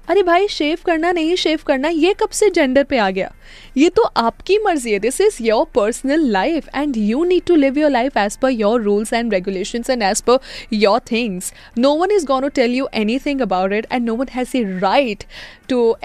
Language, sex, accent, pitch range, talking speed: Hindi, female, native, 210-285 Hz, 215 wpm